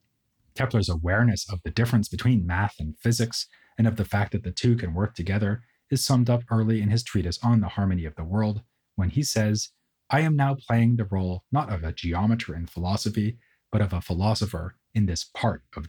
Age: 30-49